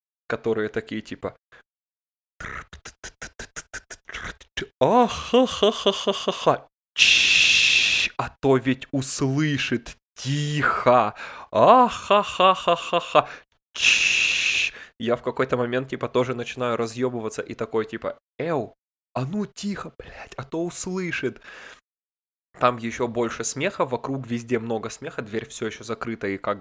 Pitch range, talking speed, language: 110-130 Hz, 100 wpm, Russian